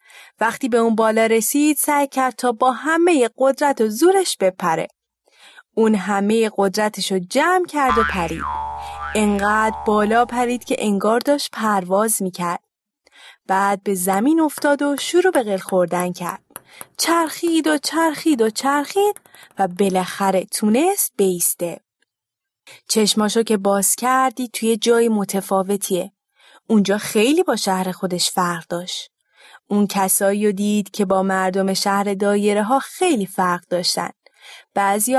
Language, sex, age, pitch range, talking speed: Persian, female, 20-39, 200-280 Hz, 130 wpm